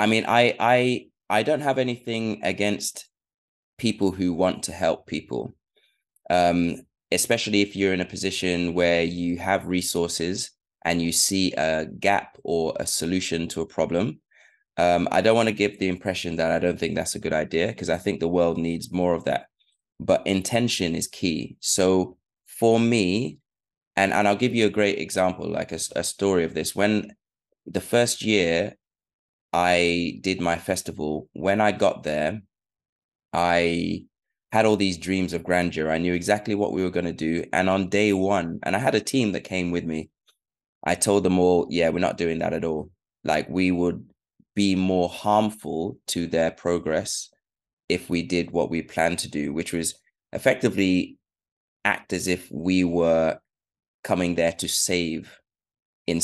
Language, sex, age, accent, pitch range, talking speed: English, male, 20-39, British, 85-100 Hz, 175 wpm